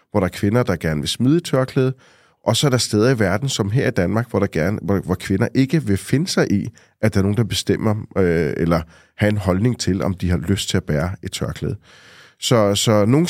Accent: native